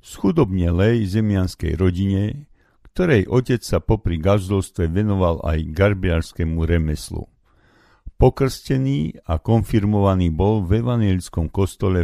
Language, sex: Slovak, male